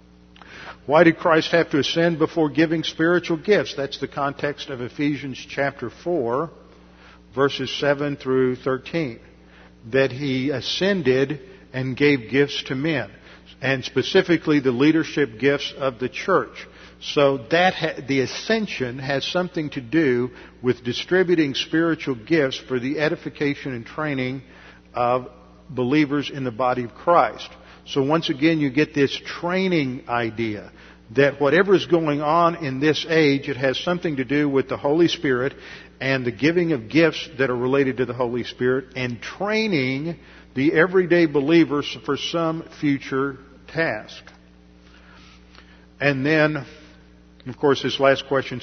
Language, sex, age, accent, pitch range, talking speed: English, male, 50-69, American, 120-155 Hz, 140 wpm